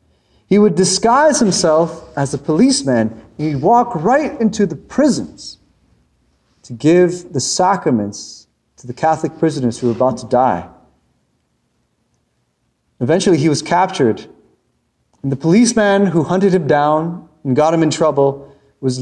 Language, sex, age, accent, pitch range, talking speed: English, male, 30-49, American, 120-180 Hz, 135 wpm